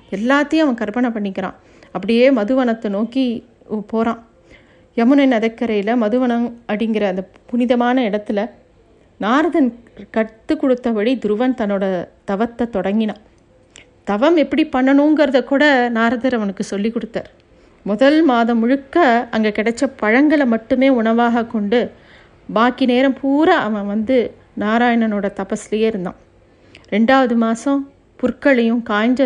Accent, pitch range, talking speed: native, 220-265 Hz, 105 wpm